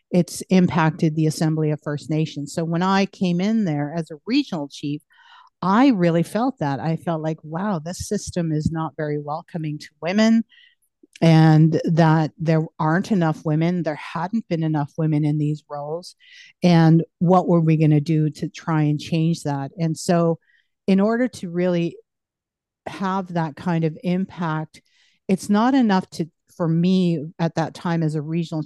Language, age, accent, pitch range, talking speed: English, 50-69, American, 155-185 Hz, 170 wpm